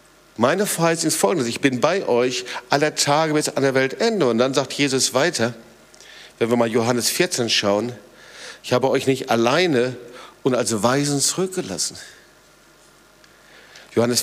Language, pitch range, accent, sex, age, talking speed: German, 120-180 Hz, German, male, 50-69, 150 wpm